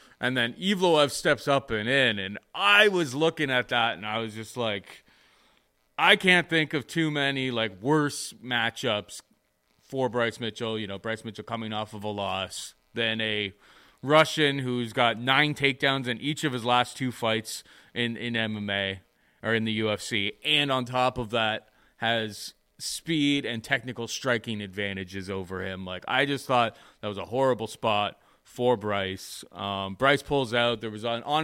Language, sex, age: English, male, 30-49